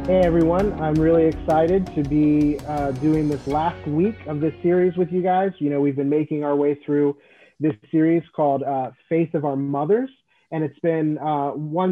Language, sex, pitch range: English, male, 145-165 Hz